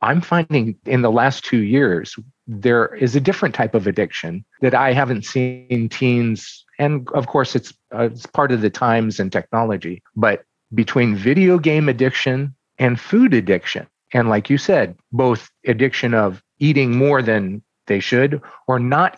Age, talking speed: 40-59, 170 wpm